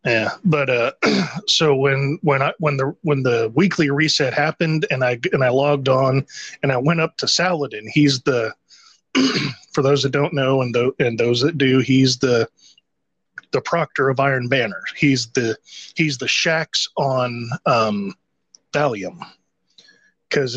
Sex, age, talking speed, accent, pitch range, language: male, 30-49, 160 wpm, American, 130-155 Hz, English